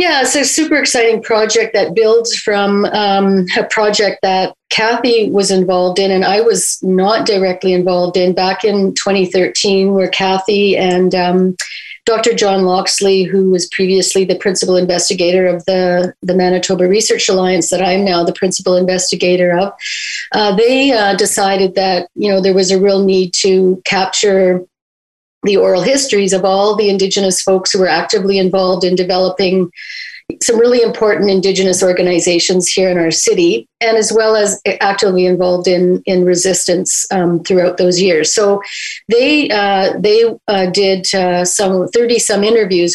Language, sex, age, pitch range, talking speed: English, female, 40-59, 185-210 Hz, 160 wpm